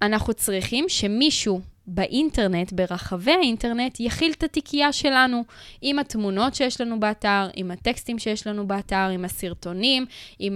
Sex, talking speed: female, 130 wpm